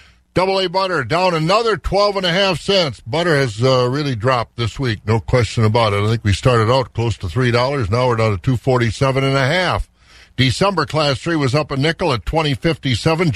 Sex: male